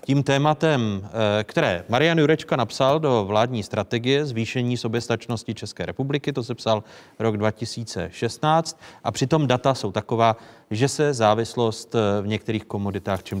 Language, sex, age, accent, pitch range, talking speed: Czech, male, 30-49, native, 115-160 Hz, 135 wpm